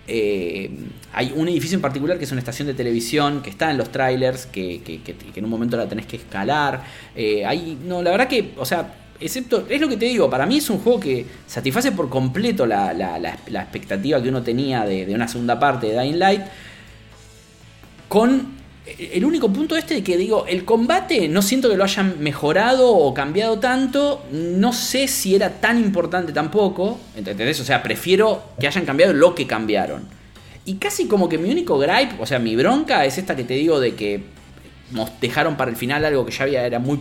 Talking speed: 210 wpm